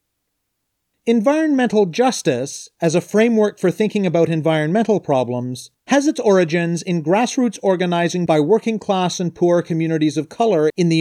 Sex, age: male, 40-59